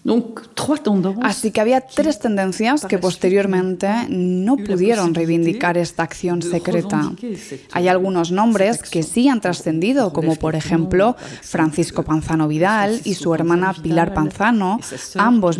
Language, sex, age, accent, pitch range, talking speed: Spanish, female, 20-39, Spanish, 170-205 Hz, 125 wpm